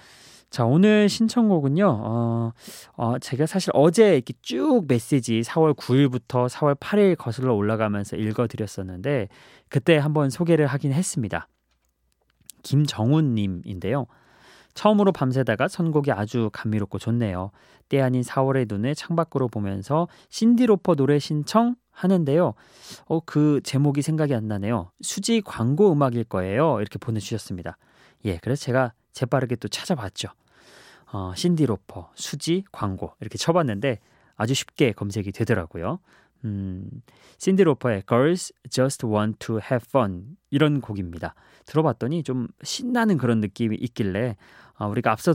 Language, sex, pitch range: Korean, male, 110-155 Hz